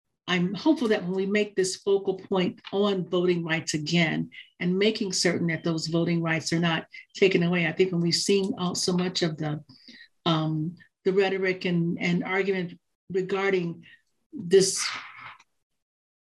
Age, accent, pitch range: 50-69, American, 170-190 Hz